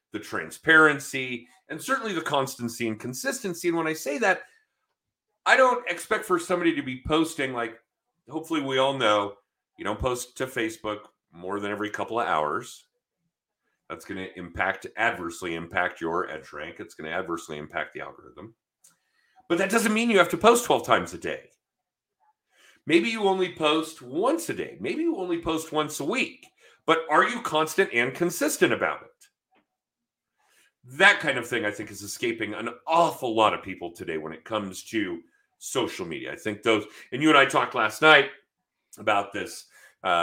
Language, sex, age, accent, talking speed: English, male, 40-59, American, 180 wpm